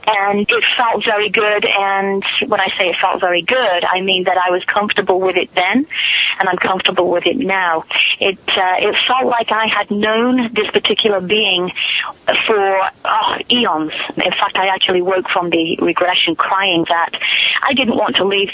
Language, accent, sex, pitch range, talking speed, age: English, British, female, 180-225 Hz, 185 wpm, 30-49